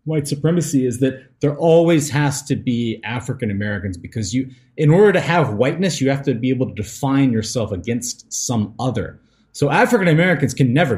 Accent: American